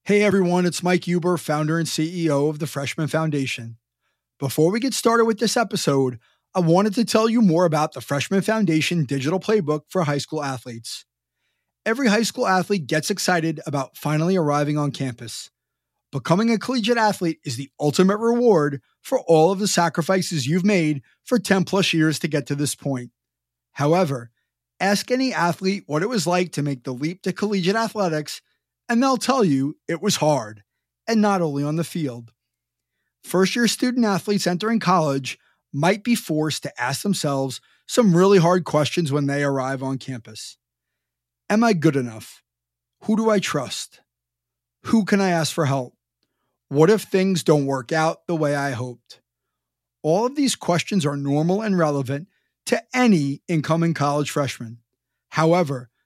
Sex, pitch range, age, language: male, 140-195 Hz, 30-49, English